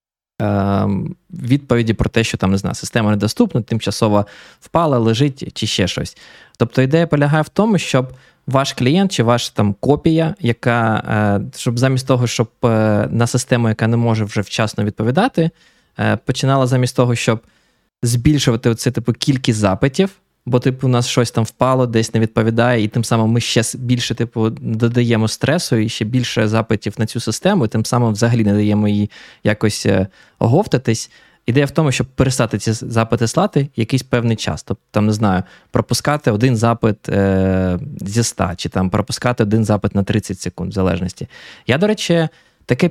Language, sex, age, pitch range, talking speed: Ukrainian, male, 20-39, 110-145 Hz, 165 wpm